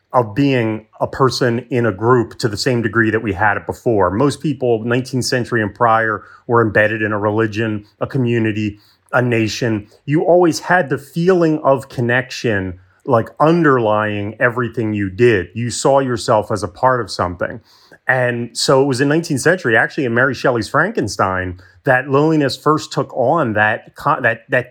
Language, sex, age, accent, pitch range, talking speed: English, male, 30-49, American, 110-140 Hz, 170 wpm